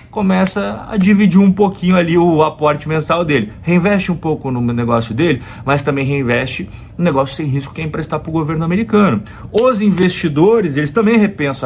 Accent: Brazilian